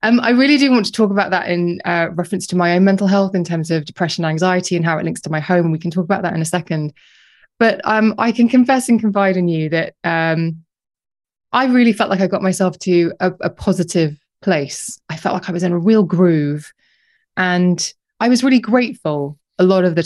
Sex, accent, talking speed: female, British, 235 wpm